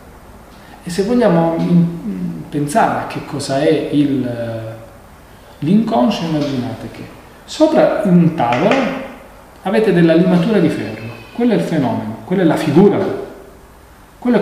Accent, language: native, Italian